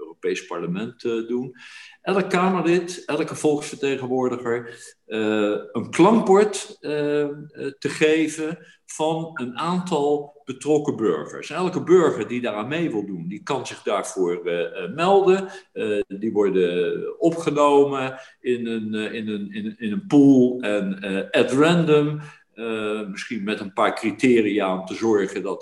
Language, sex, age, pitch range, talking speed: Dutch, male, 50-69, 115-185 Hz, 140 wpm